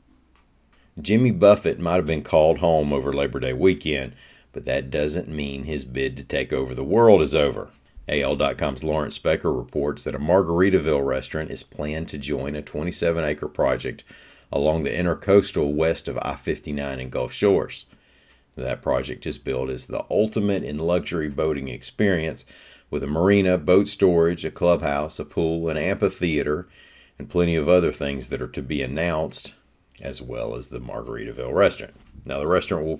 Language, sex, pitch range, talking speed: English, male, 70-95 Hz, 165 wpm